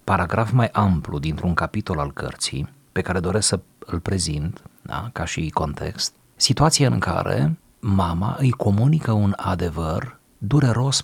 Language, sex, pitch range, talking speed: Romanian, male, 85-115 Hz, 135 wpm